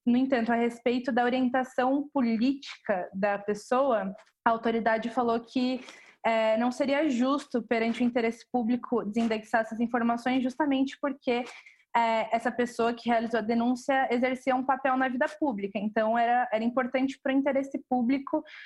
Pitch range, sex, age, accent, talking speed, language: 225-255 Hz, female, 20-39, Brazilian, 150 wpm, Portuguese